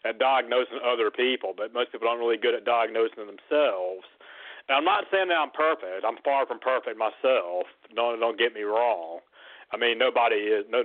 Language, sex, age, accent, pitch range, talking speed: English, male, 40-59, American, 115-160 Hz, 205 wpm